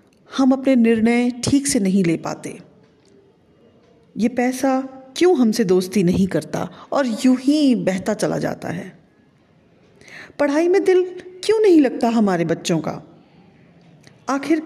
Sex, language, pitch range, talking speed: female, Hindi, 210-280 Hz, 130 wpm